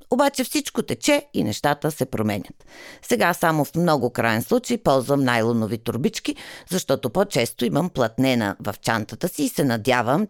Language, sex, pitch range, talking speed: Bulgarian, female, 115-165 Hz, 150 wpm